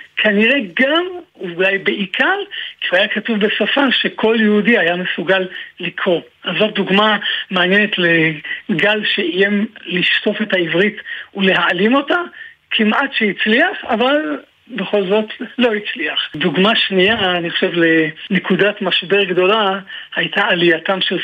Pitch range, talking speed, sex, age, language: 180-230 Hz, 120 wpm, male, 50-69, Hebrew